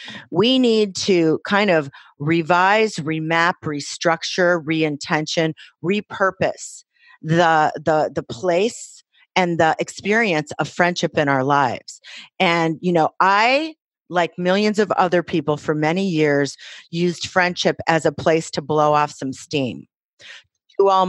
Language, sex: English, female